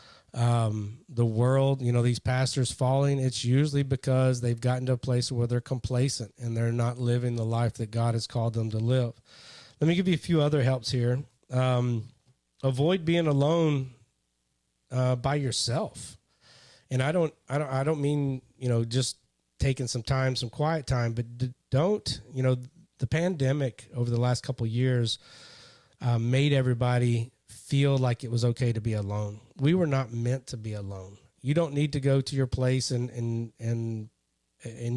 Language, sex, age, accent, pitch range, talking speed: English, male, 30-49, American, 120-135 Hz, 185 wpm